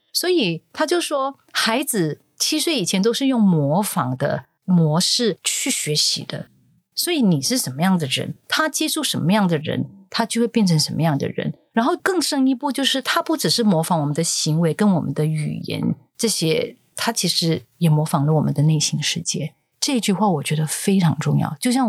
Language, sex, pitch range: Chinese, female, 160-230 Hz